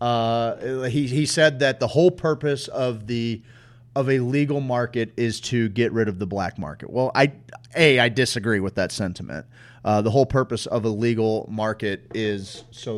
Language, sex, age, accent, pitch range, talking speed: English, male, 30-49, American, 115-135 Hz, 185 wpm